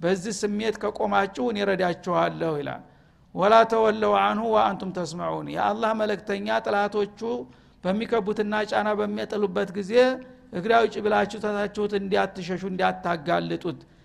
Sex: male